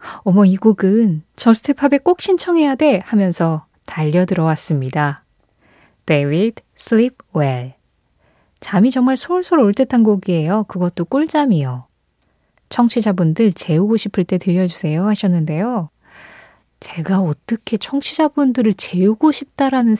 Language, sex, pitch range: Korean, female, 165-240 Hz